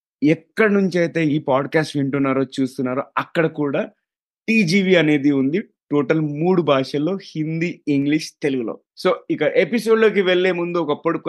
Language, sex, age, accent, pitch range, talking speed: Telugu, male, 30-49, native, 135-170 Hz, 130 wpm